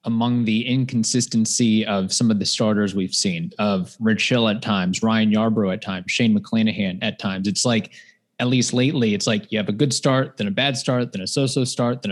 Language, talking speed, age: English, 220 wpm, 20-39